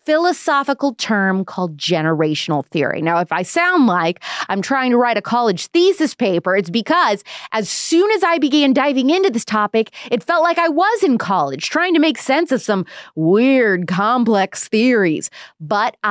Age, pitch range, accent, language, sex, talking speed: 20-39, 180-275 Hz, American, English, female, 170 wpm